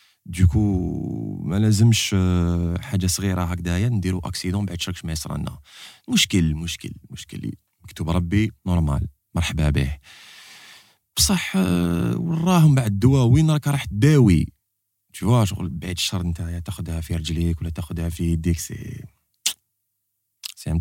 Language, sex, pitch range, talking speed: French, male, 85-100 Hz, 125 wpm